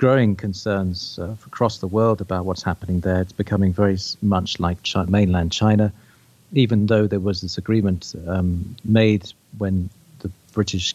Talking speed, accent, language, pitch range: 160 wpm, British, English, 95-110 Hz